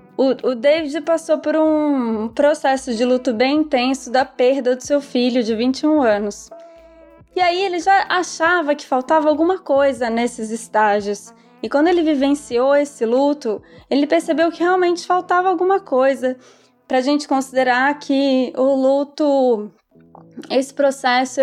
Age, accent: 20-39, Brazilian